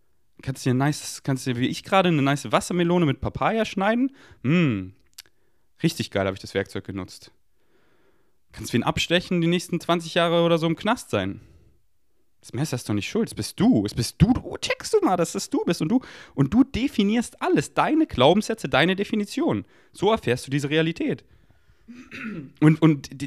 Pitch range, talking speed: 110-175 Hz, 190 wpm